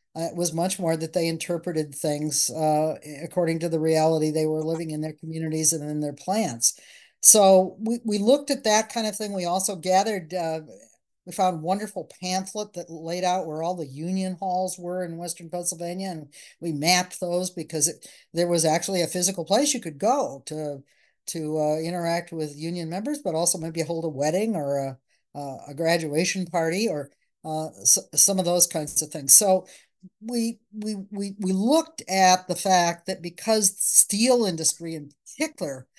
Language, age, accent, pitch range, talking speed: English, 50-69, American, 155-190 Hz, 190 wpm